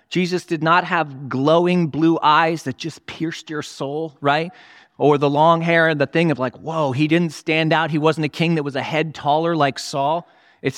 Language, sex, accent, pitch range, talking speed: English, male, American, 140-165 Hz, 215 wpm